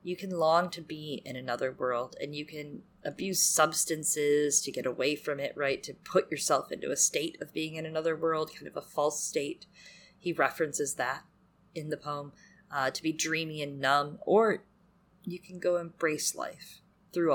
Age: 20-39